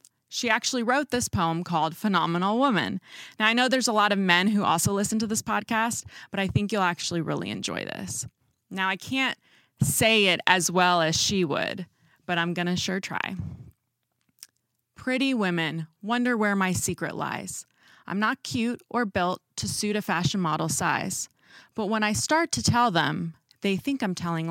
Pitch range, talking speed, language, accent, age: 170-220 Hz, 185 wpm, English, American, 20-39